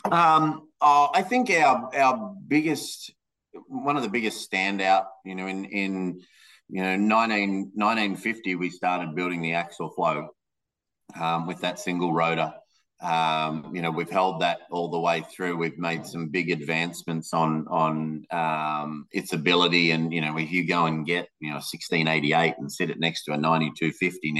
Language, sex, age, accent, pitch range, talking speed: English, male, 30-49, Australian, 80-95 Hz, 175 wpm